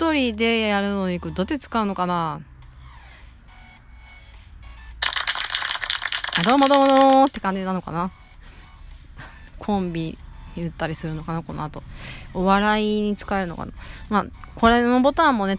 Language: Japanese